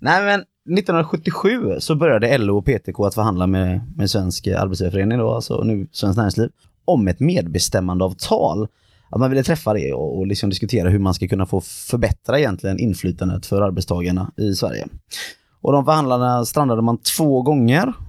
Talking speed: 165 wpm